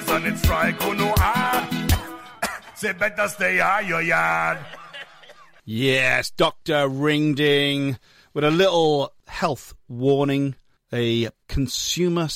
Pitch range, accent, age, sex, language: 115-160 Hz, British, 40-59, male, English